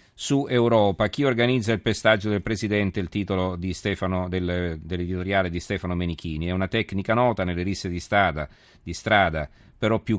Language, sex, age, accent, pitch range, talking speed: Italian, male, 40-59, native, 85-105 Hz, 170 wpm